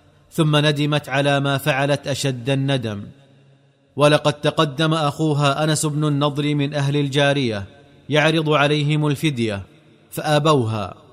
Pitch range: 140-150 Hz